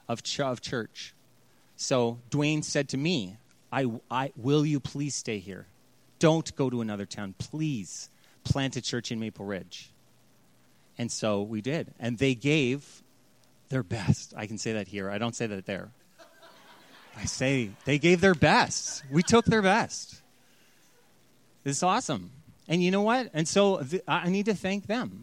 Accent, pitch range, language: American, 125-165 Hz, English